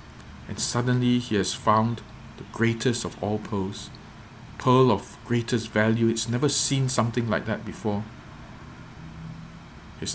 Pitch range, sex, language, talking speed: 100-120 Hz, male, English, 130 wpm